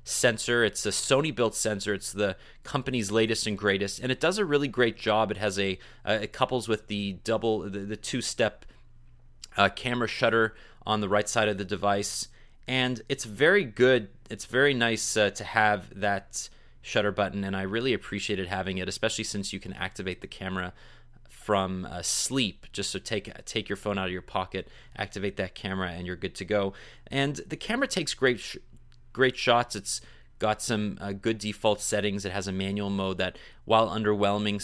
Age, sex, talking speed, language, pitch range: 30-49, male, 190 wpm, English, 95-115 Hz